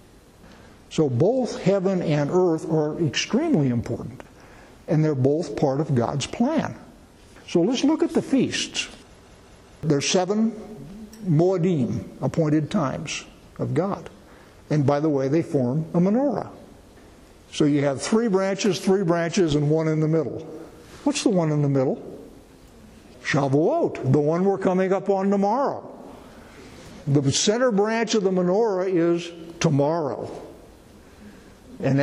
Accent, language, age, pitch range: American, English, 60-79, 145-190 Hz